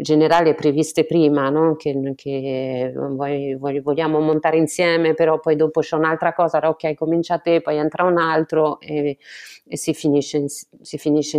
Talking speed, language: 135 wpm, Italian